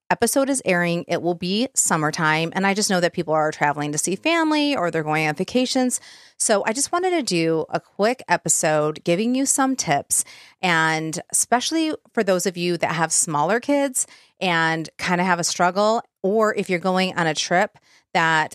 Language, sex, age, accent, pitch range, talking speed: English, female, 30-49, American, 170-225 Hz, 195 wpm